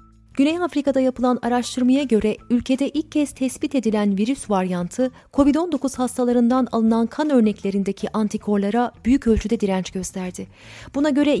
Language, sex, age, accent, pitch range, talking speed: Turkish, female, 30-49, native, 215-260 Hz, 125 wpm